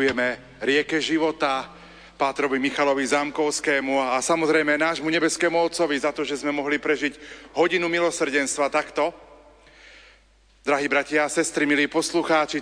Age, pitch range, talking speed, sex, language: 40-59, 145-165 Hz, 125 wpm, male, Slovak